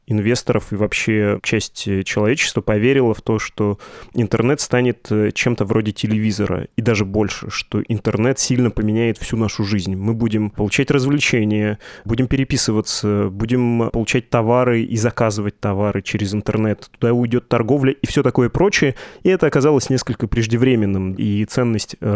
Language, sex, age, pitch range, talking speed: Russian, male, 20-39, 105-125 Hz, 140 wpm